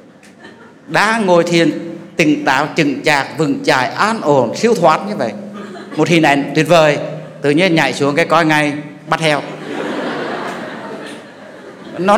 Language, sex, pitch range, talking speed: English, male, 145-200 Hz, 150 wpm